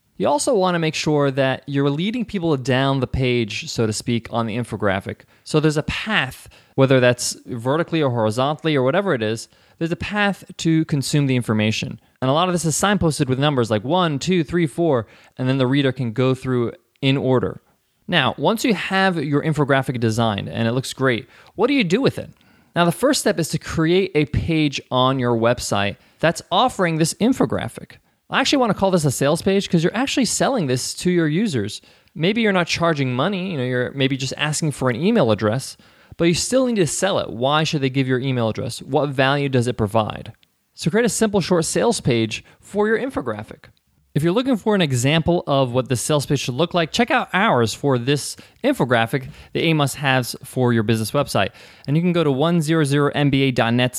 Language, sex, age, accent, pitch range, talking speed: English, male, 20-39, American, 125-170 Hz, 210 wpm